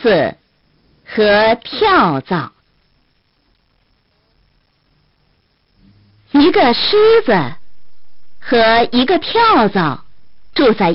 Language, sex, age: Chinese, female, 50-69